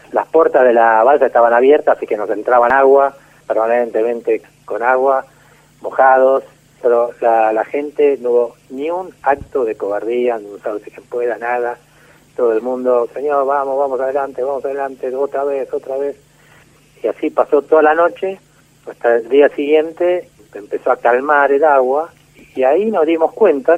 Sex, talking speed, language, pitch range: male, 170 wpm, Spanish, 120-165 Hz